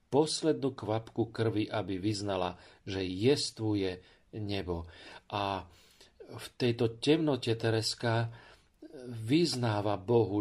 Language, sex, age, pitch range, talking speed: Slovak, male, 40-59, 100-125 Hz, 85 wpm